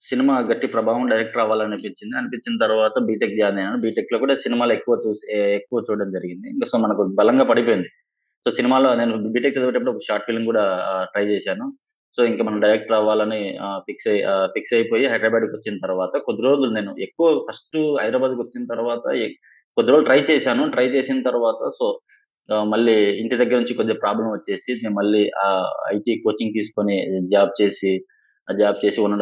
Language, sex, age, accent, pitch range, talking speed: Telugu, male, 20-39, native, 105-130 Hz, 165 wpm